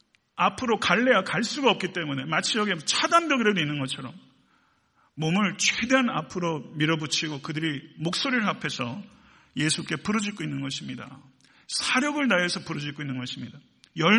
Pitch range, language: 145-200 Hz, Korean